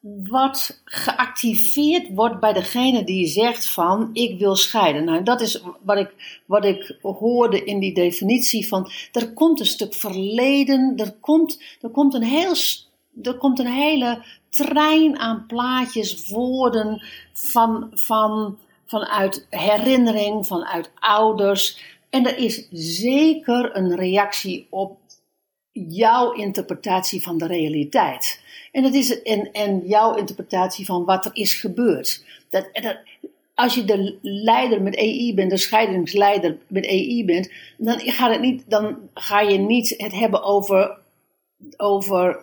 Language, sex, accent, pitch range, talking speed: Dutch, female, Dutch, 195-250 Hz, 140 wpm